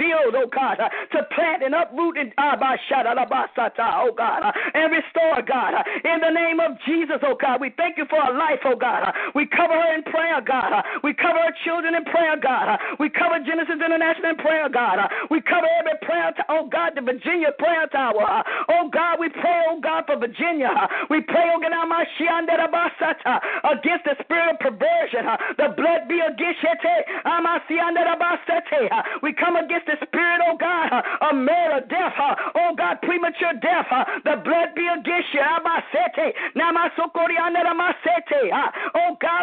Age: 40-59